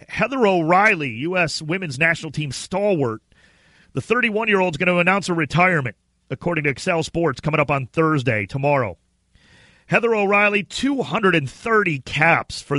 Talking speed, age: 135 wpm, 40-59